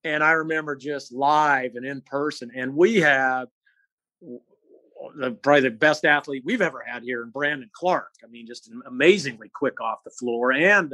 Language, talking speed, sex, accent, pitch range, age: English, 170 wpm, male, American, 130-185 Hz, 50-69